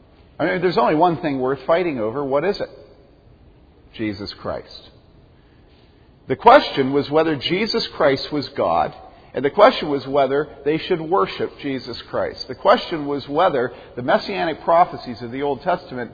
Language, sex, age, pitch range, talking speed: English, male, 50-69, 135-175 Hz, 160 wpm